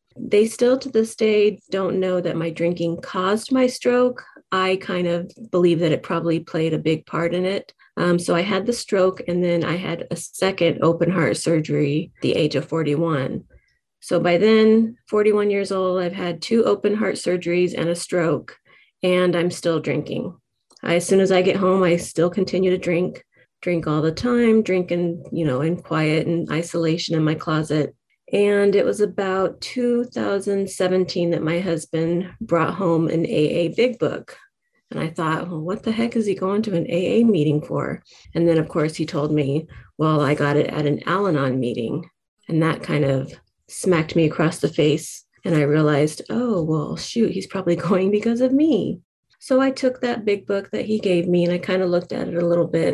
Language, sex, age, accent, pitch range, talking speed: English, female, 30-49, American, 160-195 Hz, 200 wpm